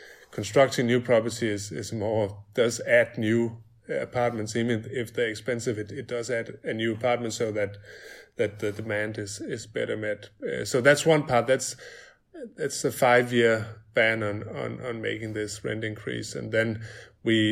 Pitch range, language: 105-115 Hz, English